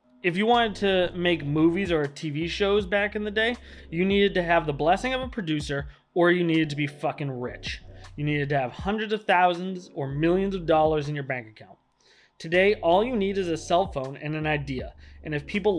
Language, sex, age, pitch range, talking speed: English, male, 20-39, 140-185 Hz, 220 wpm